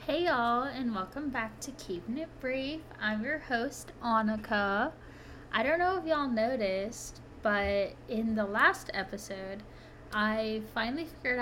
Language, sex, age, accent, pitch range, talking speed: English, female, 10-29, American, 210-250 Hz, 140 wpm